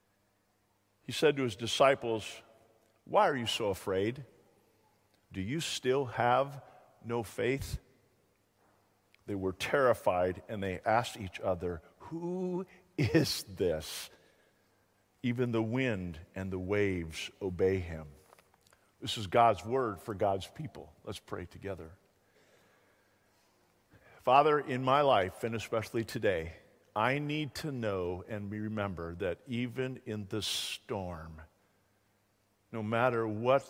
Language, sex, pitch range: English, male, 90-115 Hz